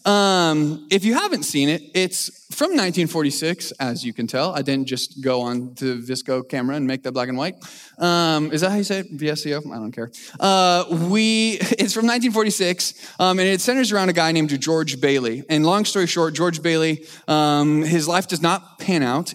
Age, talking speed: 20-39, 200 wpm